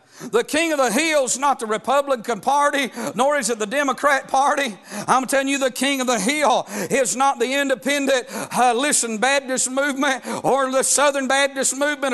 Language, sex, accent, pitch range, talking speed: English, male, American, 235-280 Hz, 185 wpm